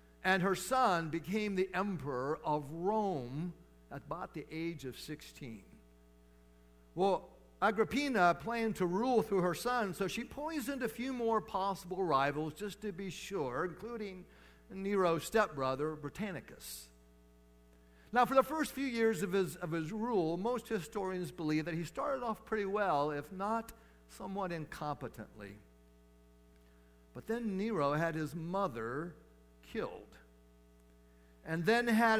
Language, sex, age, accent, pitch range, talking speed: English, male, 50-69, American, 125-195 Hz, 130 wpm